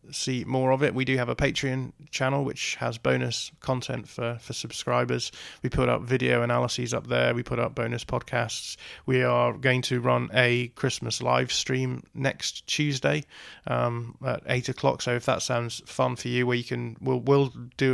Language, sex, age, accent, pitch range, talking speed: English, male, 20-39, British, 120-130 Hz, 185 wpm